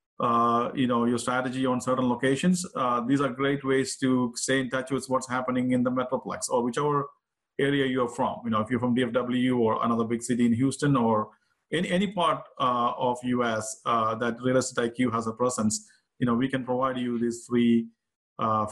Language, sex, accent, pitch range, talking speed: English, male, Indian, 120-140 Hz, 205 wpm